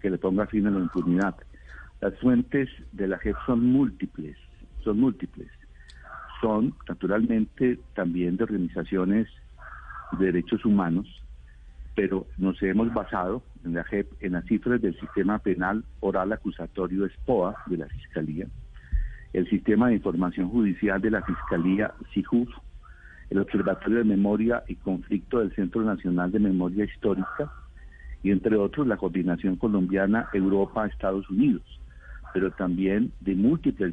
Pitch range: 90-110 Hz